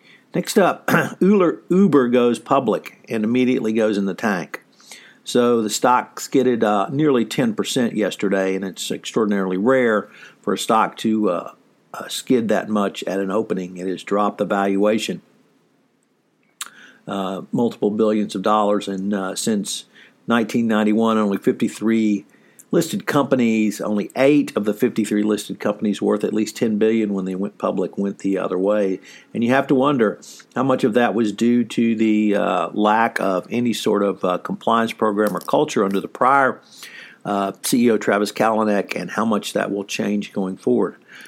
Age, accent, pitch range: 50-69, American, 100-120 Hz